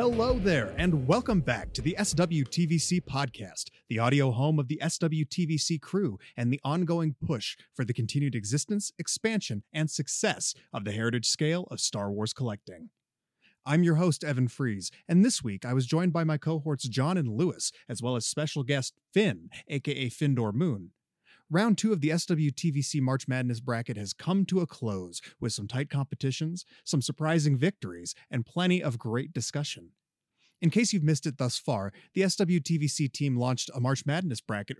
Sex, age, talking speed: male, 30-49, 175 wpm